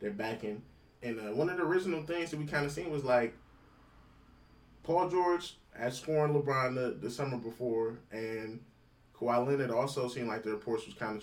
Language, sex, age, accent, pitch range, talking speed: English, male, 20-39, American, 105-120 Hz, 190 wpm